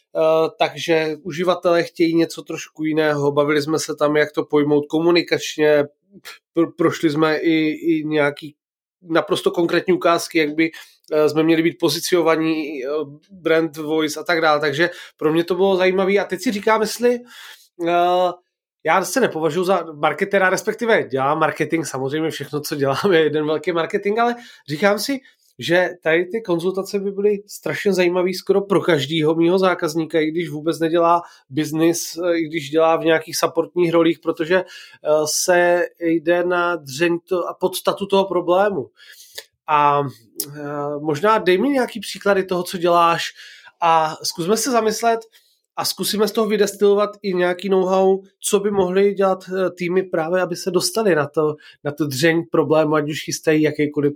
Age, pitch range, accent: 30-49, 155-185 Hz, native